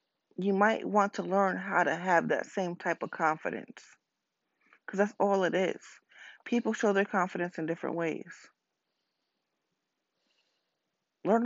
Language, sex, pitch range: English, female, 165-200 Hz